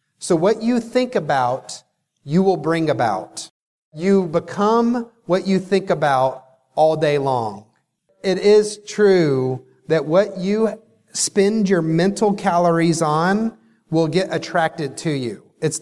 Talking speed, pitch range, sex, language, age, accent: 135 wpm, 165-210 Hz, male, English, 30-49, American